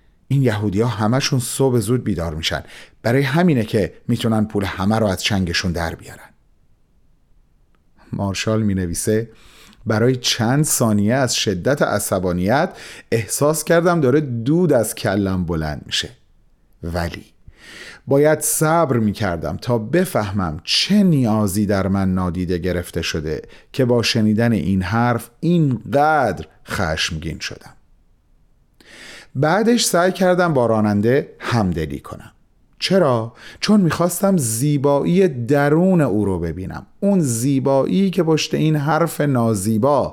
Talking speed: 115 wpm